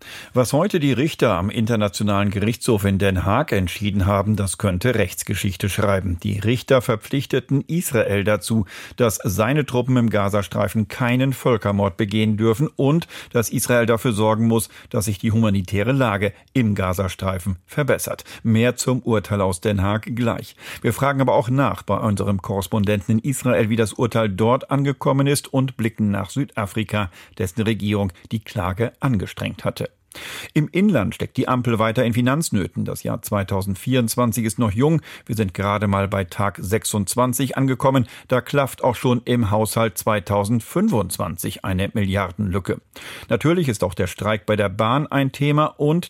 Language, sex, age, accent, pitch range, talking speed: German, male, 50-69, German, 100-125 Hz, 155 wpm